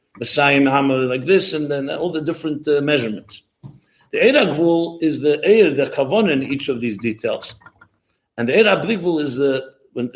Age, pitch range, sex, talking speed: 60-79, 125-165 Hz, male, 170 wpm